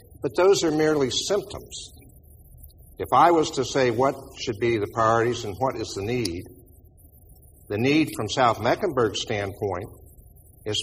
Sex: male